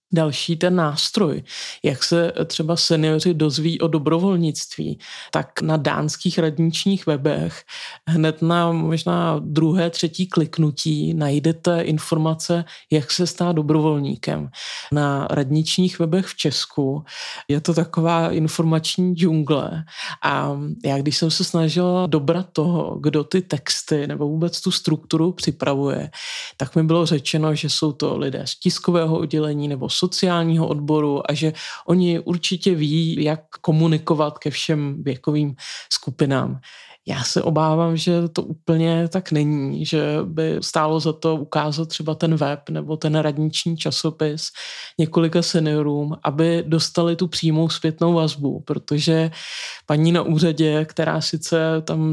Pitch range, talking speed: 150-170 Hz, 130 wpm